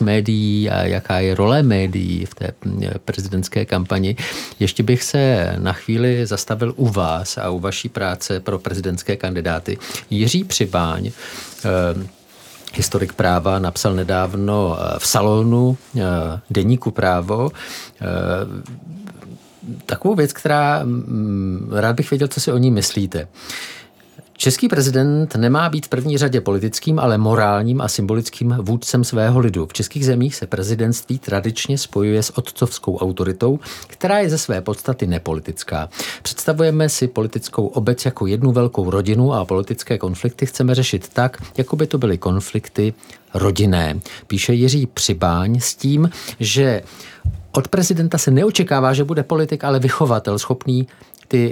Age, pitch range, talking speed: 50-69, 95-130 Hz, 135 wpm